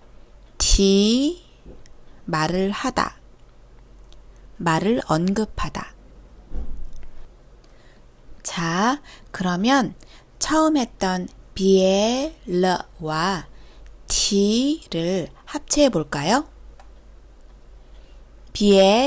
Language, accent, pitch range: Korean, native, 170-240 Hz